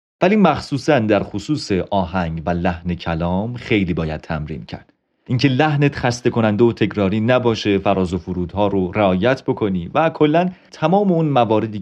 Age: 30-49